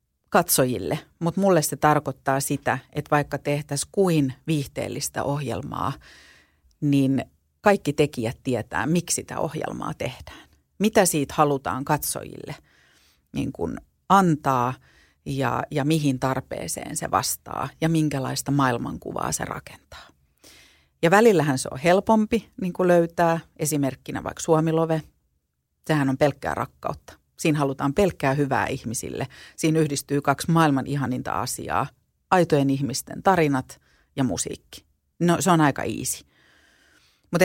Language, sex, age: Finnish, female, 40-59